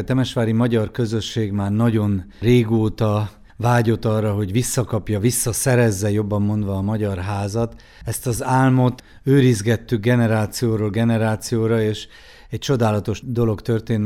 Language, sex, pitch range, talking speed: Hungarian, male, 105-120 Hz, 120 wpm